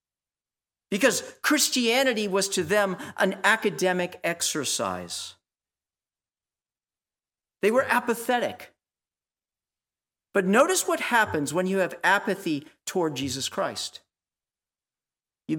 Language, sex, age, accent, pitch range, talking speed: English, male, 50-69, American, 150-240 Hz, 90 wpm